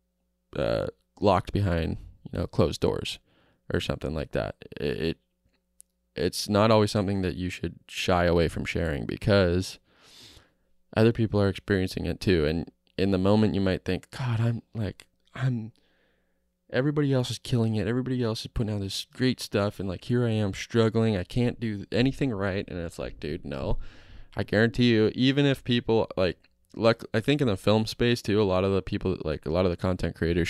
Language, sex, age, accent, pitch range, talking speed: English, male, 20-39, American, 90-110 Hz, 190 wpm